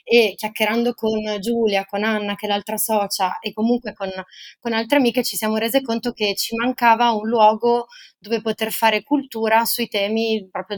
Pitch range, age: 200-240 Hz, 20-39